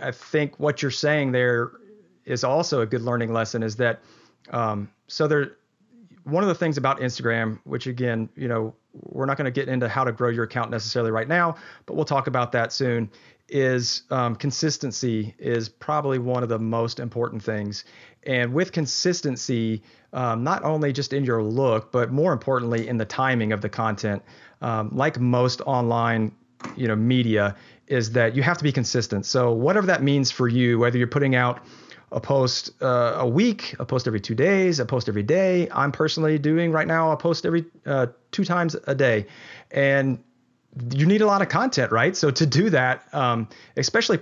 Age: 40-59